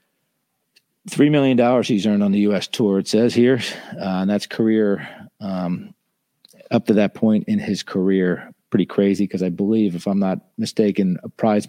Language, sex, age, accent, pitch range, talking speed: English, male, 40-59, American, 95-130 Hz, 165 wpm